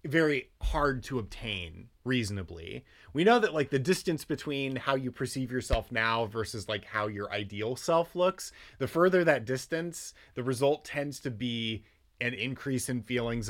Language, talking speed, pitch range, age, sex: English, 165 wpm, 100-140 Hz, 30-49, male